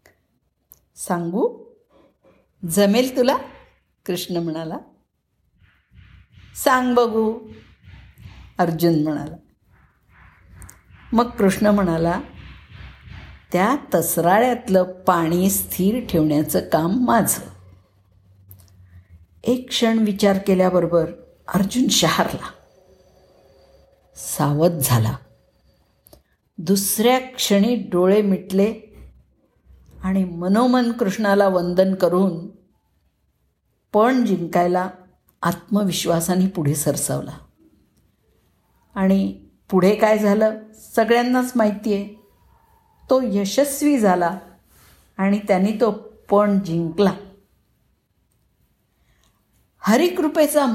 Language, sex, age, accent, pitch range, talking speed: Marathi, female, 50-69, native, 150-225 Hz, 65 wpm